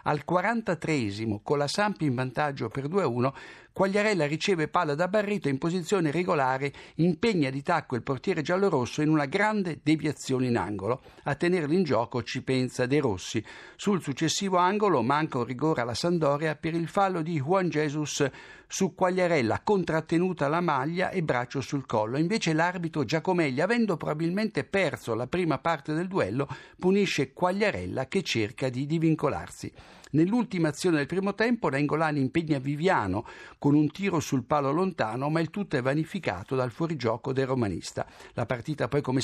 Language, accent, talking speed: Italian, native, 160 wpm